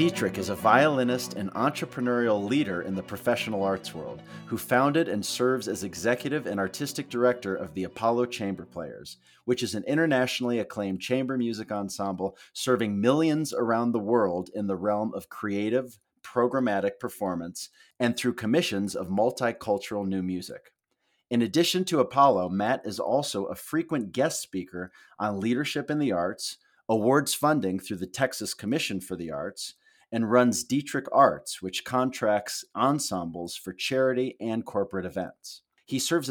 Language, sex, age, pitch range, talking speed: English, male, 30-49, 100-130 Hz, 150 wpm